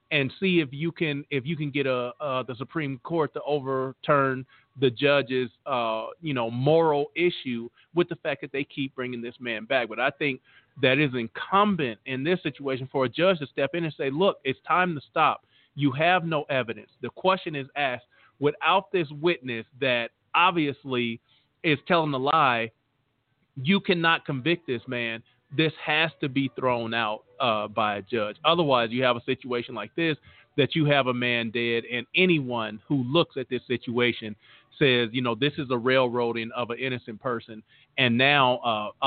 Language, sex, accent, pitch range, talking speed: English, male, American, 120-150 Hz, 185 wpm